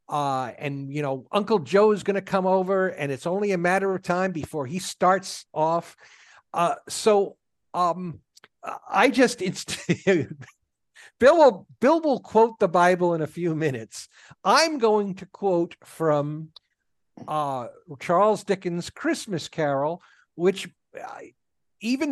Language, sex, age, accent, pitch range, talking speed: English, male, 50-69, American, 155-215 Hz, 135 wpm